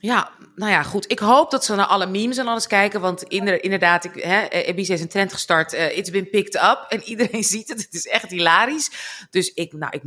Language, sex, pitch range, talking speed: Dutch, female, 170-230 Hz, 225 wpm